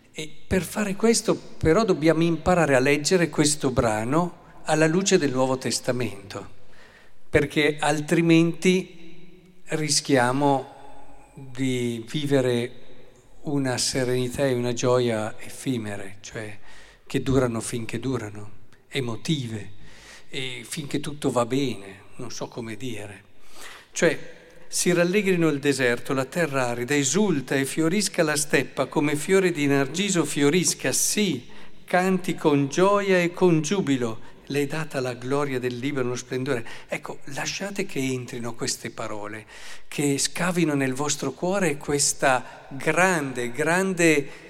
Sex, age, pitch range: male, 50-69, 125-165 Hz